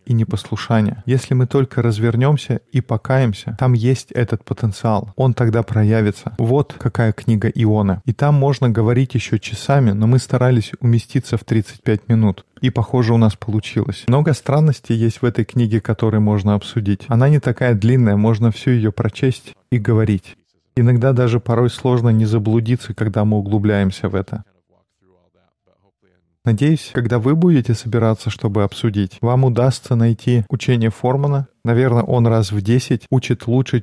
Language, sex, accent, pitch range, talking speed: Russian, male, native, 110-130 Hz, 155 wpm